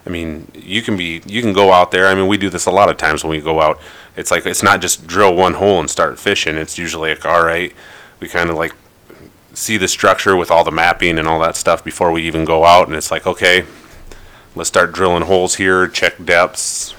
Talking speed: 245 wpm